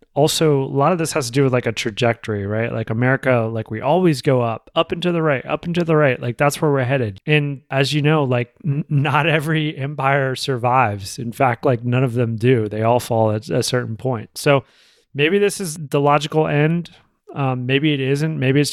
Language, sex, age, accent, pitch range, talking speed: English, male, 30-49, American, 120-145 Hz, 230 wpm